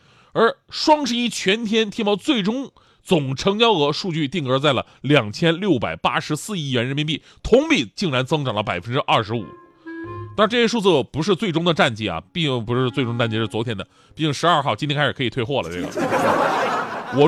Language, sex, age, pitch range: Chinese, male, 30-49, 125-205 Hz